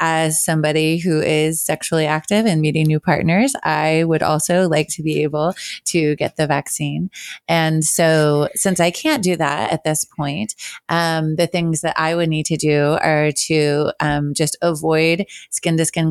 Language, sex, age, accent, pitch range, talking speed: English, female, 20-39, American, 150-170 Hz, 180 wpm